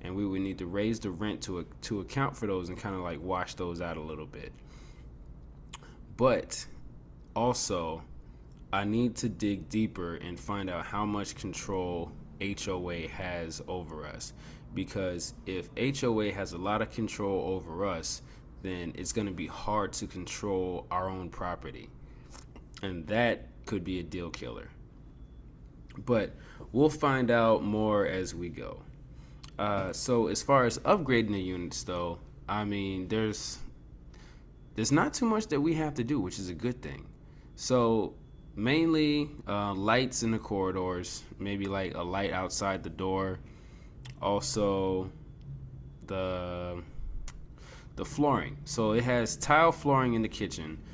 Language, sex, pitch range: English, male, 90-120 Hz